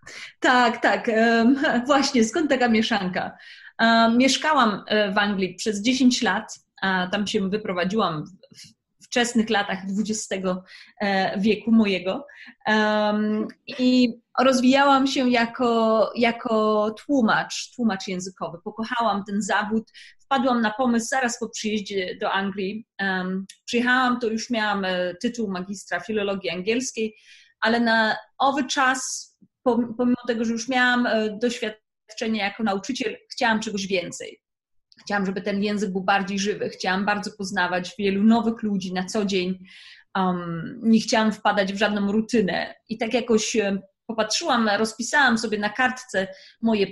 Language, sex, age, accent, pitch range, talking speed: Polish, female, 30-49, native, 200-240 Hz, 120 wpm